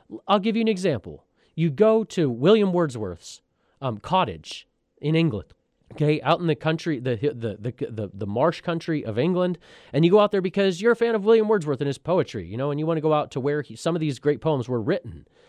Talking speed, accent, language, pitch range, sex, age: 235 wpm, American, English, 120-170 Hz, male, 30-49